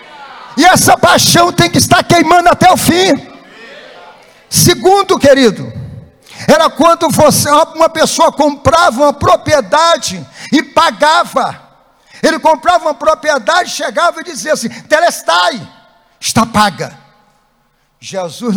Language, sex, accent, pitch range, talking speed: Portuguese, male, Brazilian, 210-310 Hz, 105 wpm